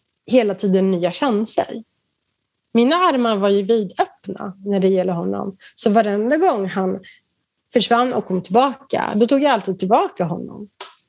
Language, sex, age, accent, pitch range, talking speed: English, female, 30-49, Swedish, 195-245 Hz, 145 wpm